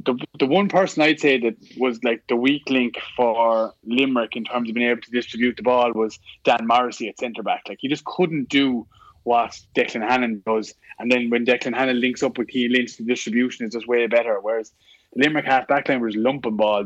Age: 20-39